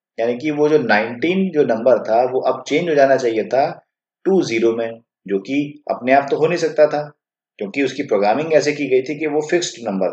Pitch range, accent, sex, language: 130-155 Hz, native, male, Hindi